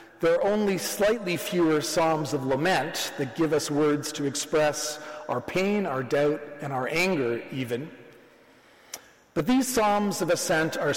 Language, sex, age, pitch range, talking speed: English, male, 40-59, 145-185 Hz, 155 wpm